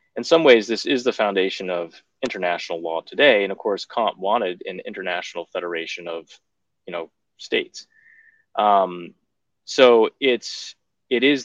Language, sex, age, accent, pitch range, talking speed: English, male, 20-39, American, 90-125 Hz, 145 wpm